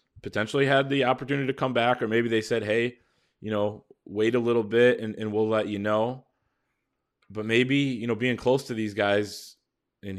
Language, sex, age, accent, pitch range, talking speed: English, male, 20-39, American, 100-115 Hz, 200 wpm